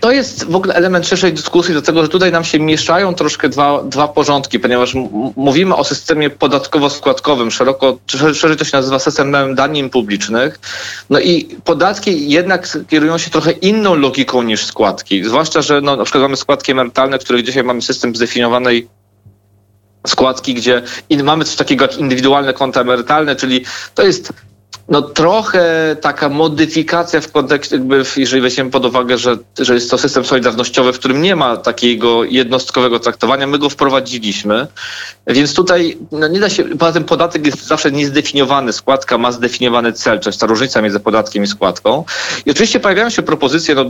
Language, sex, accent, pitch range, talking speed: Polish, male, native, 125-155 Hz, 170 wpm